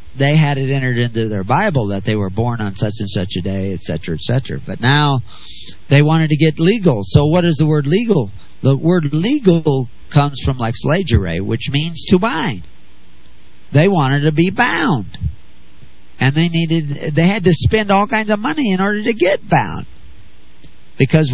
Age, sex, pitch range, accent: 50-69, male, 110-155 Hz, American